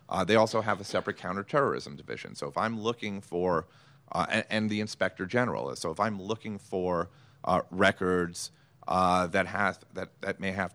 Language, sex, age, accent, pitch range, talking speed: English, male, 40-59, American, 95-135 Hz, 185 wpm